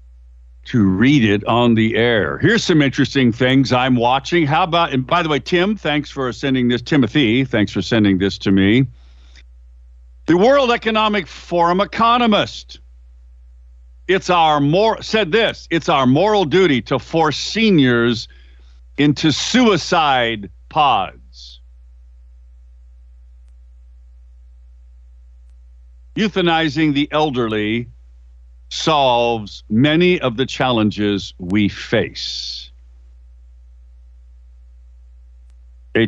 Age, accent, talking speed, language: 50-69, American, 100 wpm, English